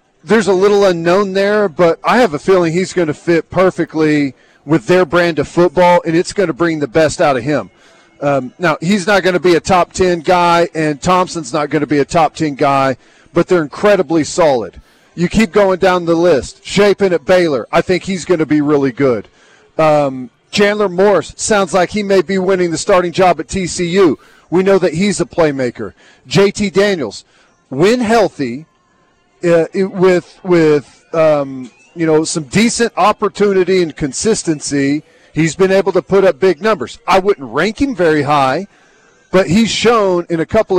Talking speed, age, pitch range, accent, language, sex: 185 wpm, 40-59, 155-190 Hz, American, English, male